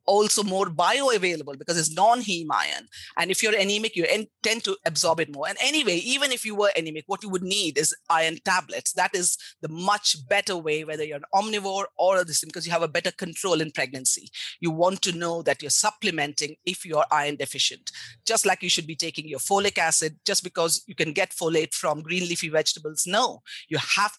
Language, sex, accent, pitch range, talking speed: English, female, Indian, 160-200 Hz, 210 wpm